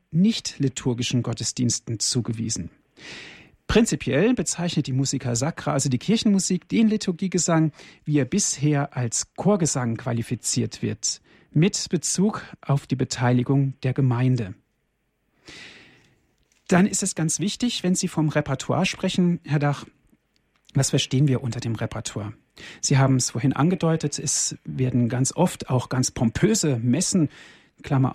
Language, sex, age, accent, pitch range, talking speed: German, male, 40-59, German, 130-175 Hz, 125 wpm